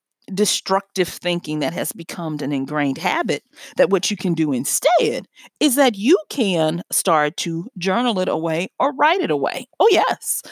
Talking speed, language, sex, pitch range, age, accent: 165 wpm, English, female, 175-235 Hz, 40-59, American